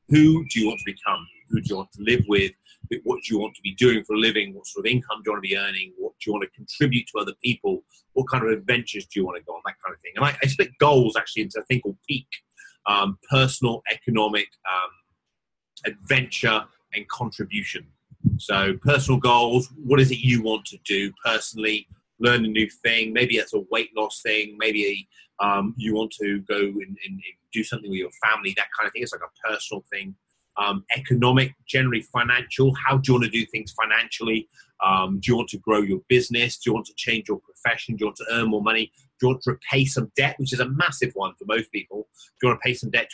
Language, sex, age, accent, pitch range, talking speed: English, male, 30-49, British, 105-130 Hz, 240 wpm